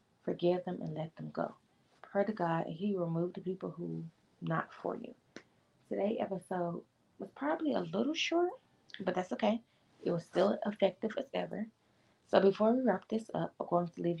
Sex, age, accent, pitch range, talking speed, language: female, 20-39, American, 165-200 Hz, 190 wpm, English